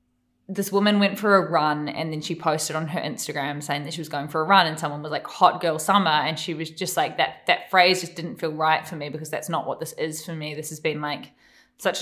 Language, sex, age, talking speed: English, female, 20-39, 275 wpm